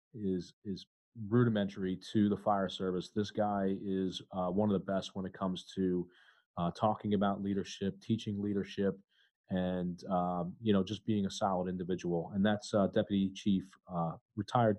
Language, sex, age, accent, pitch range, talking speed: English, male, 30-49, American, 95-105 Hz, 165 wpm